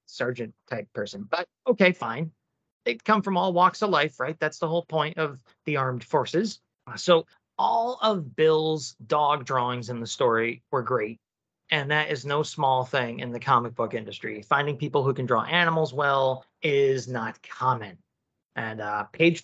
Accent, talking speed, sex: American, 175 wpm, male